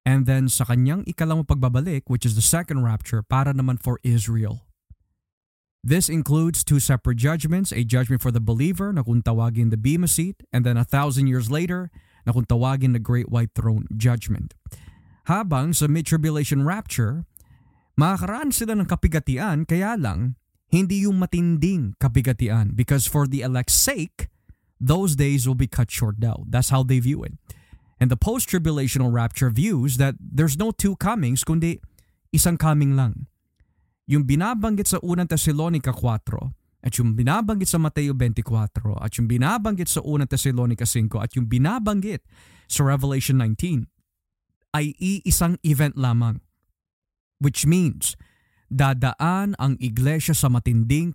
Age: 20-39